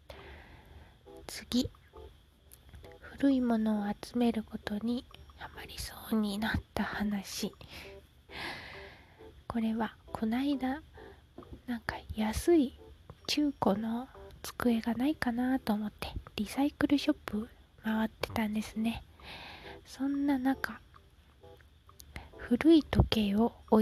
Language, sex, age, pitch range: Japanese, female, 20-39, 195-245 Hz